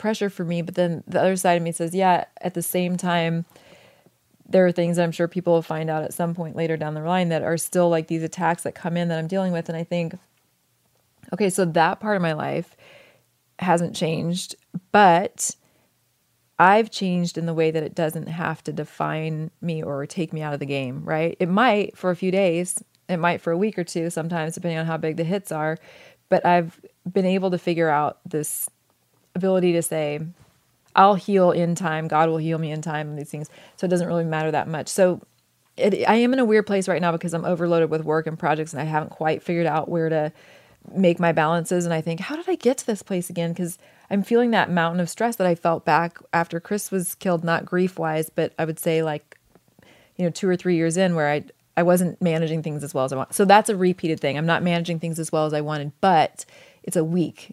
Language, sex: English, female